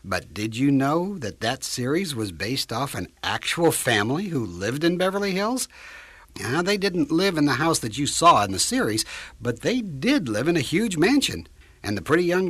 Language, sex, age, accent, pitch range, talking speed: English, male, 60-79, American, 125-195 Hz, 200 wpm